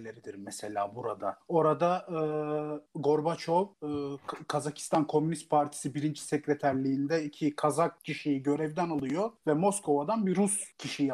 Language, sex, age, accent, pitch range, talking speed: Turkish, male, 40-59, native, 150-190 Hz, 115 wpm